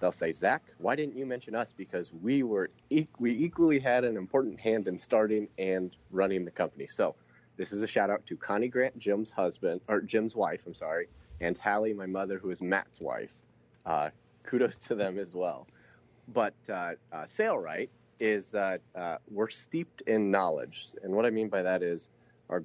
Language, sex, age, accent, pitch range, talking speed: English, male, 30-49, American, 90-110 Hz, 195 wpm